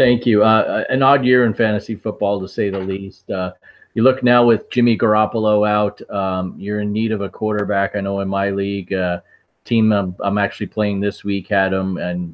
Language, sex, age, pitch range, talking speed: English, male, 30-49, 95-105 Hz, 215 wpm